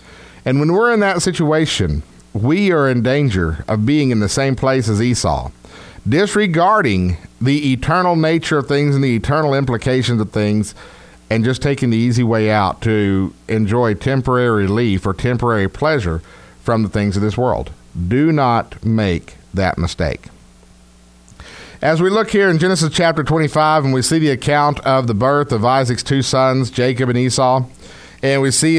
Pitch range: 105-140 Hz